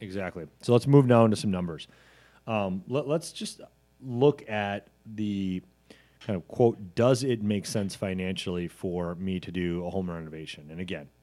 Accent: American